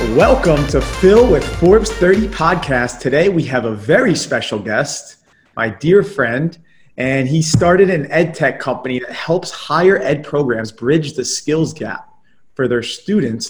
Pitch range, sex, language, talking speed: 125-160 Hz, male, English, 160 wpm